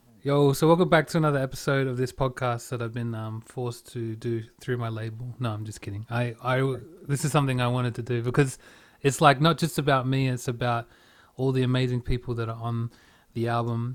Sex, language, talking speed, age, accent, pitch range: male, English, 220 wpm, 30-49, Australian, 120-135 Hz